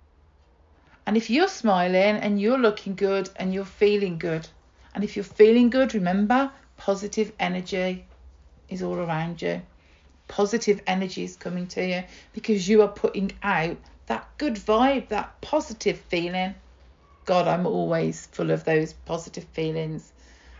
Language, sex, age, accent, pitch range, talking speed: English, female, 40-59, British, 155-210 Hz, 145 wpm